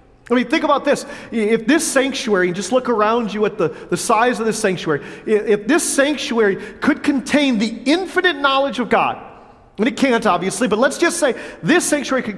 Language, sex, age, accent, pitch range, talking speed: English, male, 40-59, American, 175-240 Hz, 195 wpm